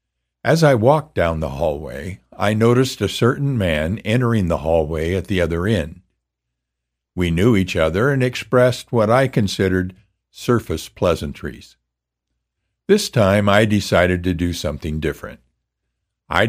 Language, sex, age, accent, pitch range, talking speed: English, male, 60-79, American, 85-115 Hz, 140 wpm